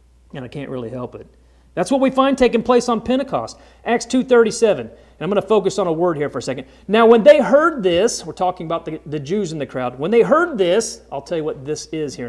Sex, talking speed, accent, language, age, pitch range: male, 260 wpm, American, English, 40-59, 180-270 Hz